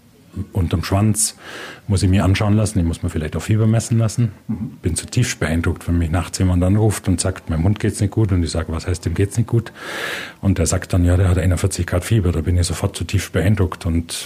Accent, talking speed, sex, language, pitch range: German, 240 wpm, male, German, 90-115 Hz